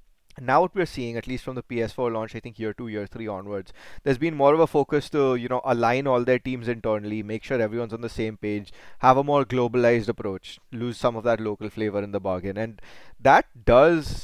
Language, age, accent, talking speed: English, 20-39, Indian, 230 wpm